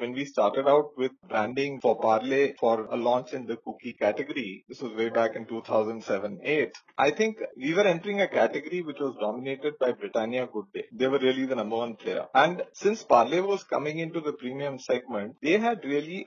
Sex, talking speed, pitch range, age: male, 200 wpm, 130-185 Hz, 30-49